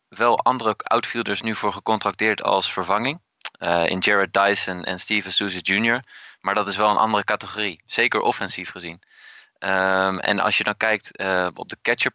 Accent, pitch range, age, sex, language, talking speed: Dutch, 100-110 Hz, 20-39, male, Dutch, 180 wpm